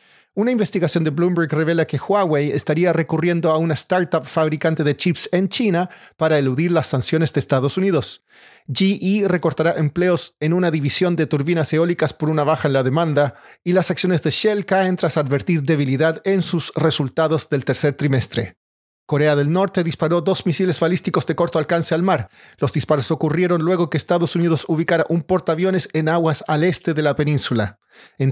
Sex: male